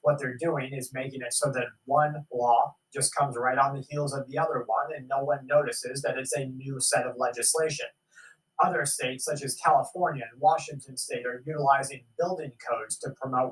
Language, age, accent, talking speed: English, 30-49, American, 200 wpm